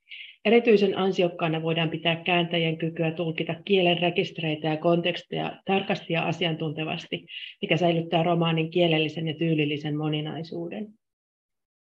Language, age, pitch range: Finnish, 30-49, 170-210 Hz